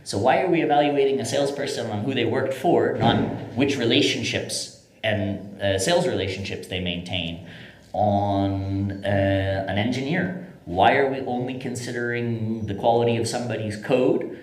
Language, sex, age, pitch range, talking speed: English, male, 30-49, 95-115 Hz, 145 wpm